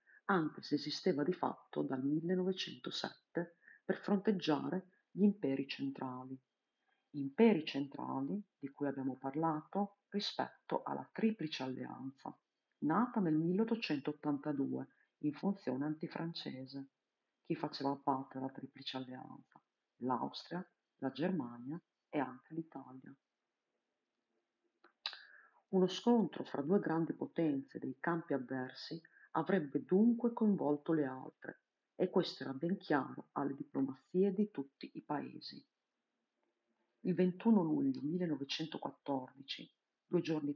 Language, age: Italian, 40-59